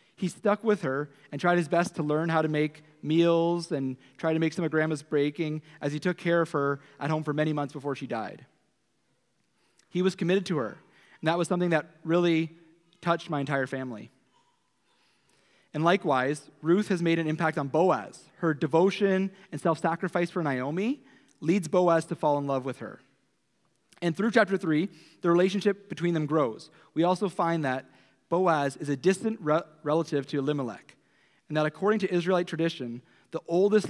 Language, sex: English, male